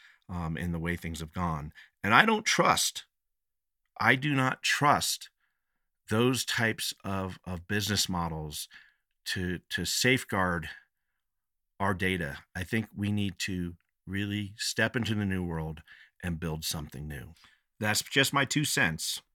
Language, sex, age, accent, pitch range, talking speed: English, male, 50-69, American, 90-110 Hz, 145 wpm